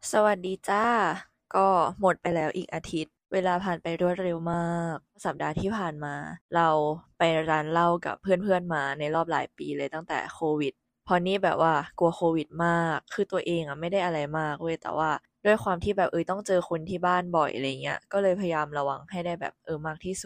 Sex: female